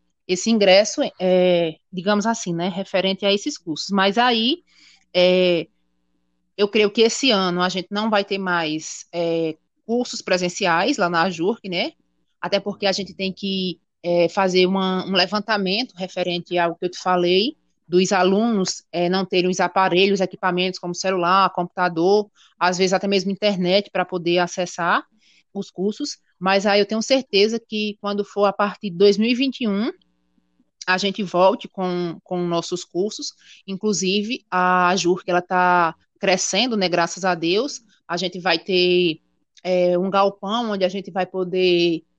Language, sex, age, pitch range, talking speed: Portuguese, female, 20-39, 175-200 Hz, 150 wpm